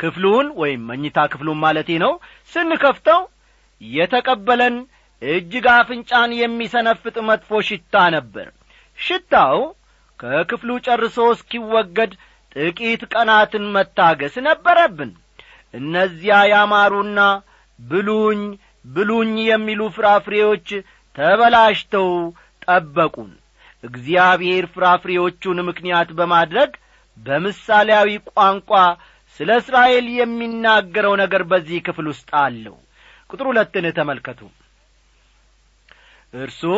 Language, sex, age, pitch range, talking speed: Amharic, male, 40-59, 170-235 Hz, 80 wpm